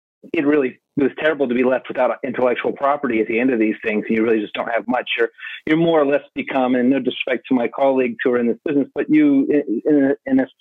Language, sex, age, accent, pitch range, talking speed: English, male, 40-59, American, 120-155 Hz, 265 wpm